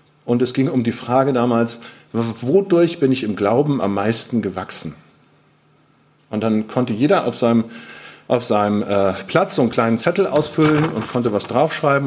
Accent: German